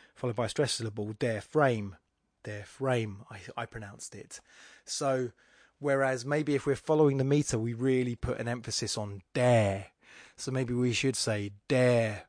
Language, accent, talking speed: English, British, 165 wpm